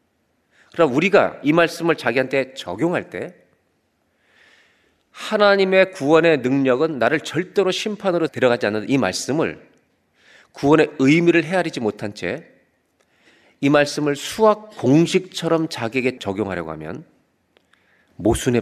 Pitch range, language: 115-165 Hz, Korean